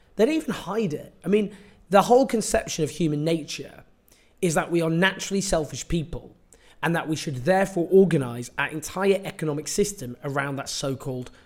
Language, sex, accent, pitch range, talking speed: English, male, British, 145-185 Hz, 175 wpm